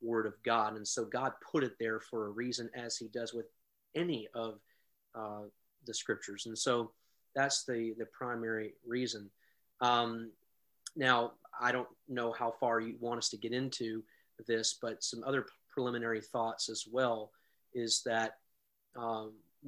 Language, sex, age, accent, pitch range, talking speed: English, male, 30-49, American, 115-130 Hz, 160 wpm